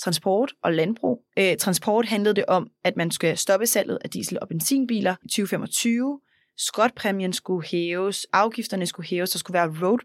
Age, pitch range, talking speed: 20-39, 180-215 Hz, 165 wpm